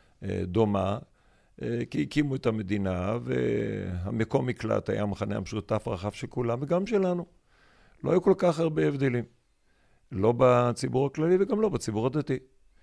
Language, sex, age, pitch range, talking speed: Hebrew, male, 50-69, 90-120 Hz, 125 wpm